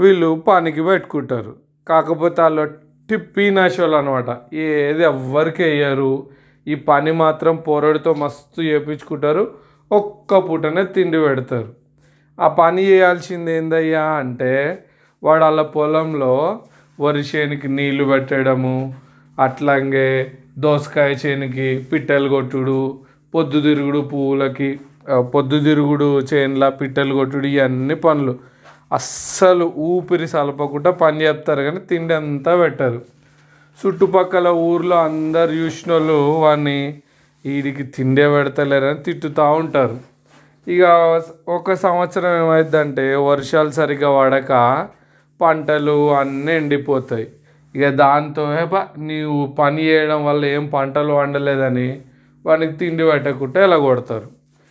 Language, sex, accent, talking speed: Telugu, male, native, 80 wpm